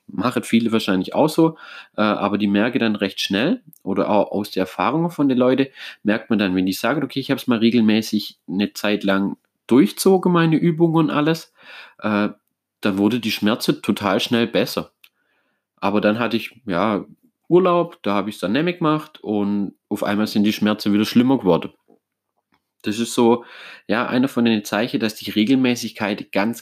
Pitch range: 100-120 Hz